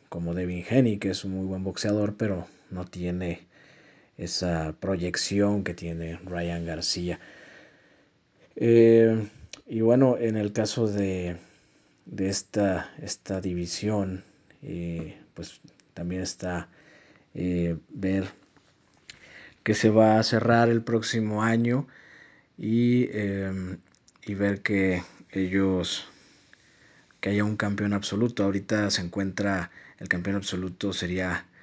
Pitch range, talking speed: 90-105 Hz, 110 wpm